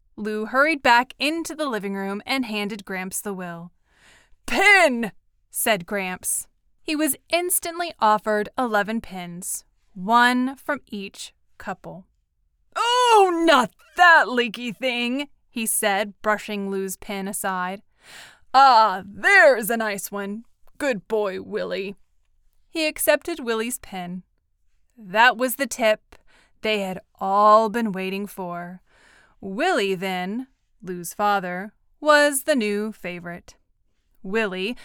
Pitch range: 195-275 Hz